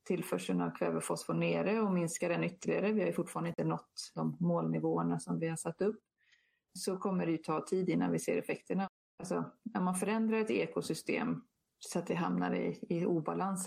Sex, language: female, Swedish